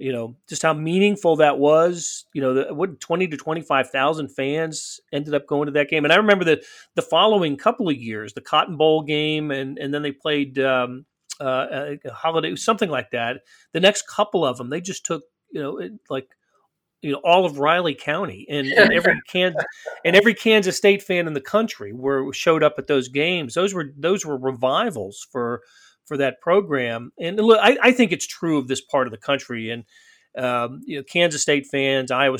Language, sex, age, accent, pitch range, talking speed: English, male, 40-59, American, 130-160 Hz, 210 wpm